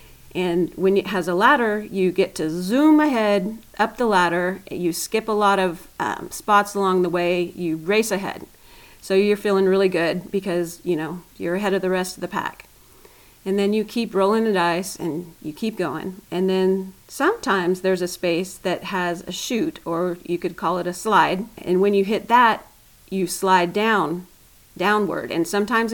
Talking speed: 190 wpm